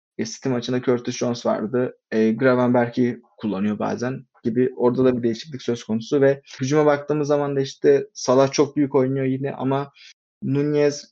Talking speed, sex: 155 wpm, male